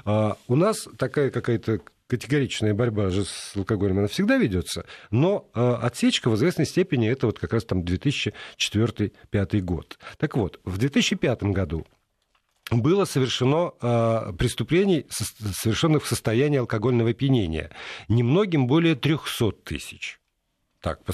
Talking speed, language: 130 wpm, Russian